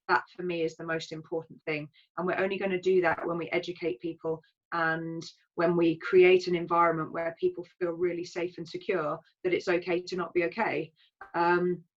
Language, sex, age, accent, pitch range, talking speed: English, female, 20-39, British, 170-185 Hz, 200 wpm